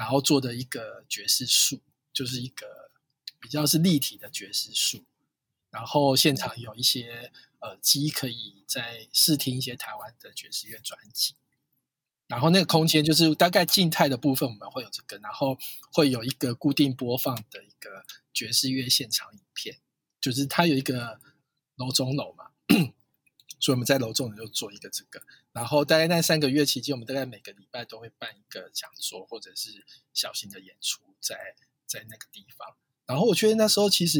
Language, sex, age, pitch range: Chinese, male, 20-39, 125-150 Hz